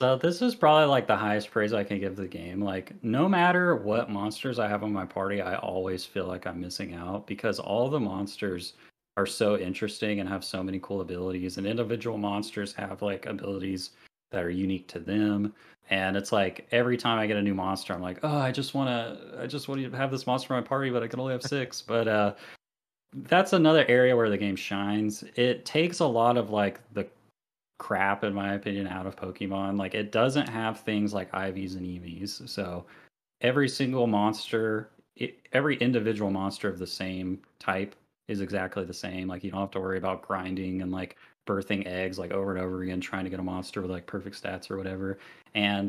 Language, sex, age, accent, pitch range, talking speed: English, male, 30-49, American, 95-115 Hz, 215 wpm